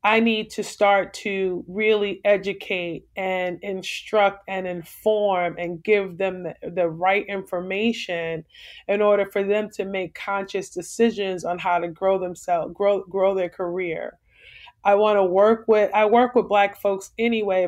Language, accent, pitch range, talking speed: English, American, 185-220 Hz, 155 wpm